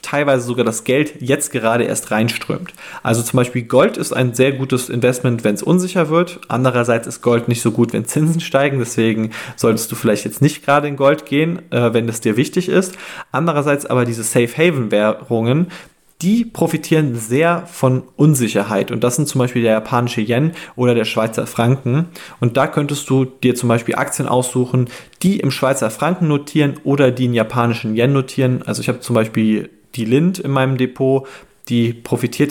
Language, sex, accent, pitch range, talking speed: German, male, German, 115-140 Hz, 185 wpm